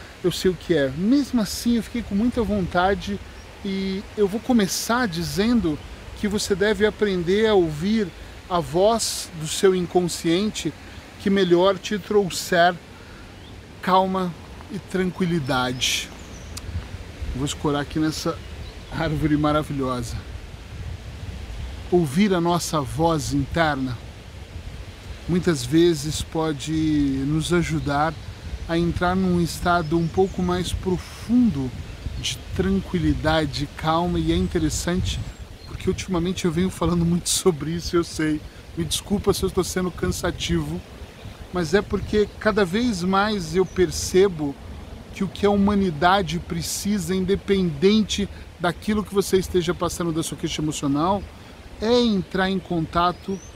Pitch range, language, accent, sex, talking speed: 140-190 Hz, Portuguese, Brazilian, male, 125 wpm